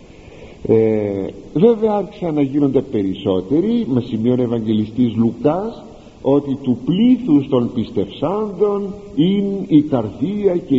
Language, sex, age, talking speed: Greek, male, 50-69, 95 wpm